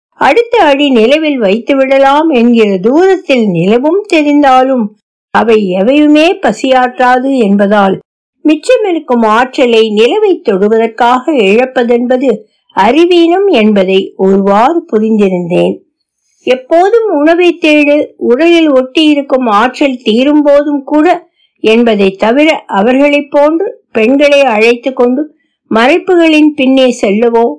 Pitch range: 210-300 Hz